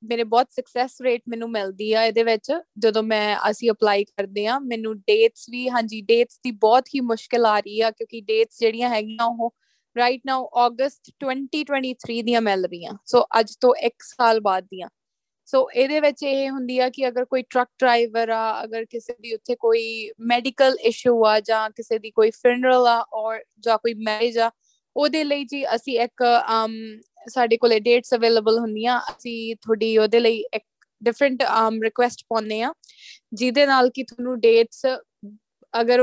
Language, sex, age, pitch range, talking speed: Punjabi, female, 20-39, 225-255 Hz, 145 wpm